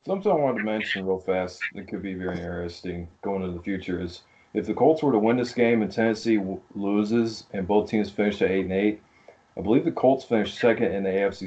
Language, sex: English, male